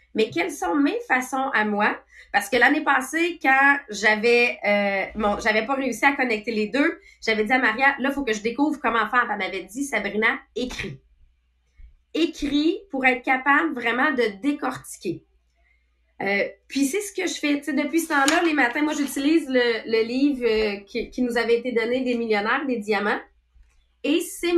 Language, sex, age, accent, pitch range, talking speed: English, female, 30-49, Canadian, 220-280 Hz, 185 wpm